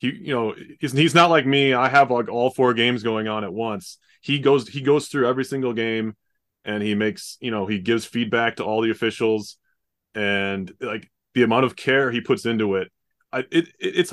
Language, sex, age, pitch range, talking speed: English, male, 20-39, 115-140 Hz, 210 wpm